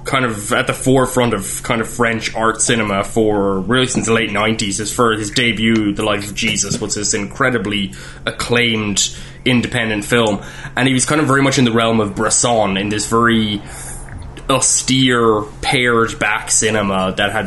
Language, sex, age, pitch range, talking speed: English, male, 20-39, 105-125 Hz, 180 wpm